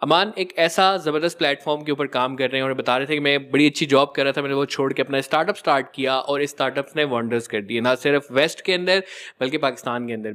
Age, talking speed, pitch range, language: 20-39, 275 wpm, 135-175 Hz, Hindi